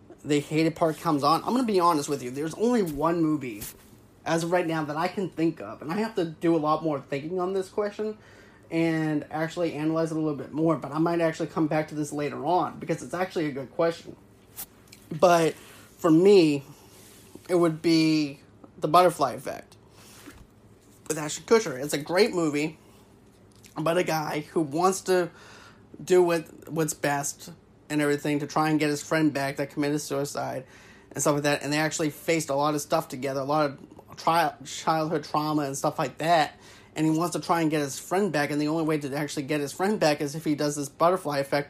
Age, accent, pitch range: 30-49, American, 145-170 Hz